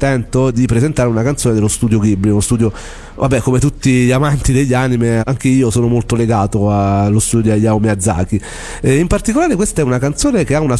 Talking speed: 200 wpm